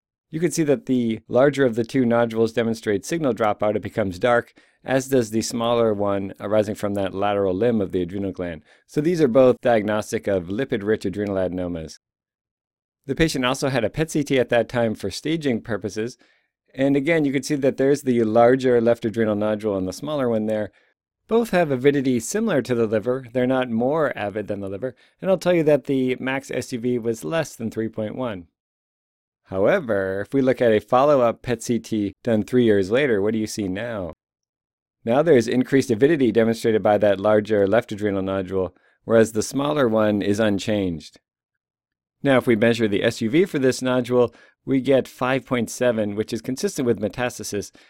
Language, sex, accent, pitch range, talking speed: English, male, American, 105-130 Hz, 185 wpm